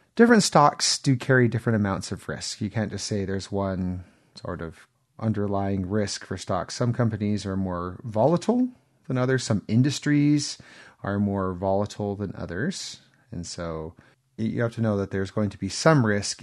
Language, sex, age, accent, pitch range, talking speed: English, male, 30-49, American, 95-120 Hz, 170 wpm